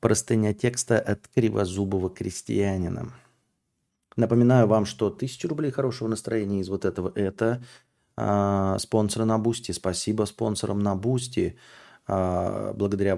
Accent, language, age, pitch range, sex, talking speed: native, Russian, 30-49, 95-115 Hz, male, 120 wpm